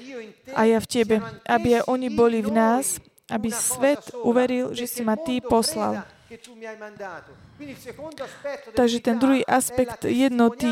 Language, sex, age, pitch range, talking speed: Slovak, female, 20-39, 225-255 Hz, 130 wpm